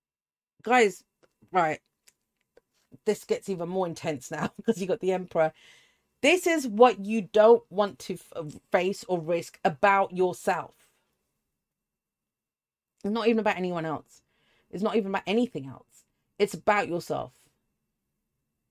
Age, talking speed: 40-59, 130 wpm